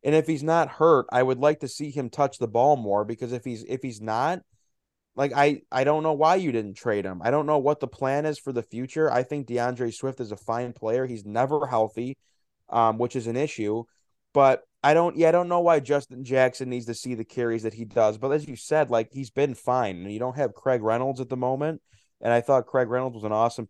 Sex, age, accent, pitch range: male, 20-39, American, 115-135 Hz